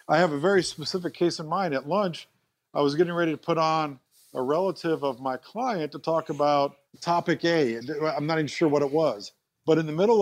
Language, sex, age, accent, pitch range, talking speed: English, male, 50-69, American, 145-180 Hz, 225 wpm